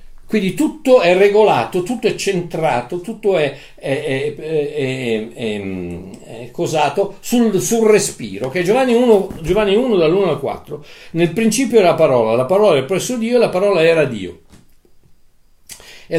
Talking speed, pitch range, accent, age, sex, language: 160 wpm, 145-210 Hz, native, 50-69, male, Italian